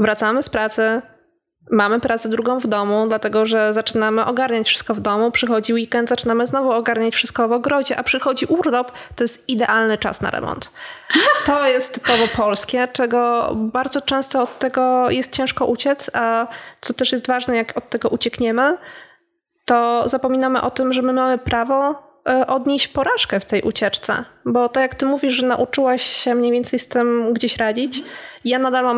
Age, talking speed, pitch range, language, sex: 20-39, 175 wpm, 225-255 Hz, Polish, female